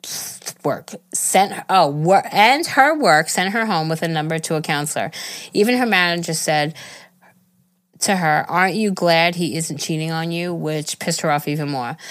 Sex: female